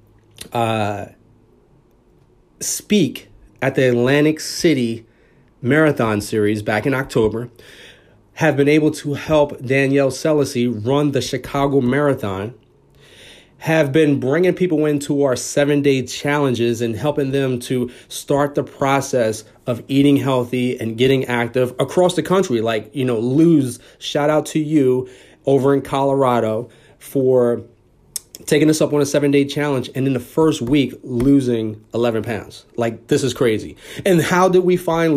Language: English